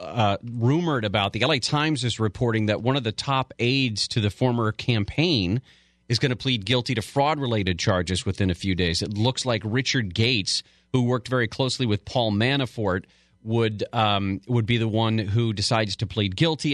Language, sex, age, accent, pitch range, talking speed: English, male, 40-59, American, 105-145 Hz, 195 wpm